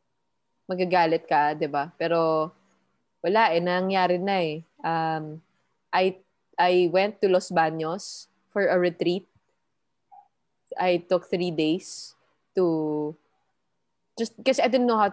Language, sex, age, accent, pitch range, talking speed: English, female, 20-39, Filipino, 155-190 Hz, 125 wpm